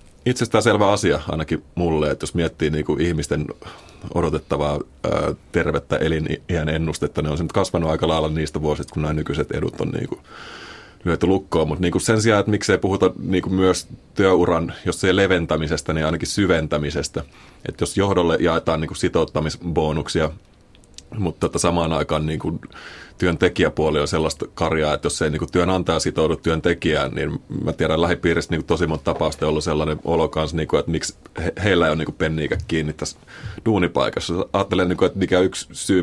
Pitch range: 75-90 Hz